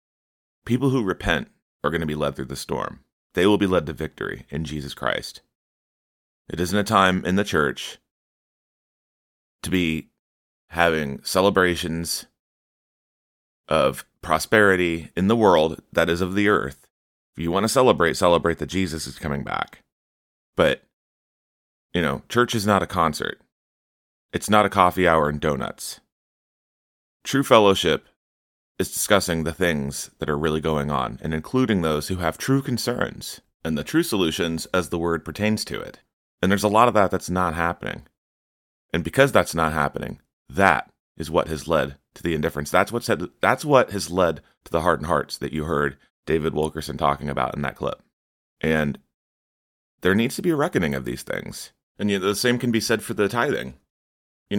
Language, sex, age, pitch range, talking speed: English, male, 30-49, 75-100 Hz, 175 wpm